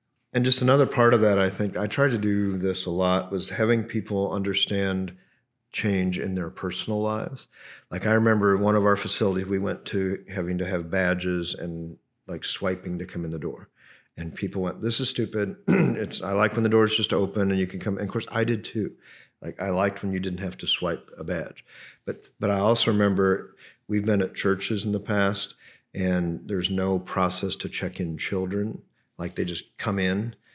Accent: American